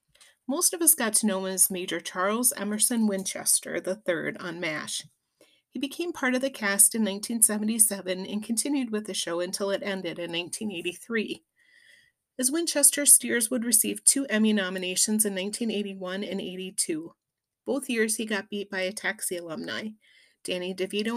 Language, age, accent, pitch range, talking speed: English, 30-49, American, 185-235 Hz, 160 wpm